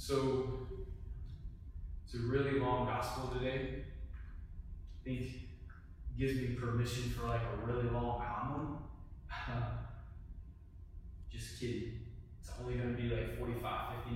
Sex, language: male, English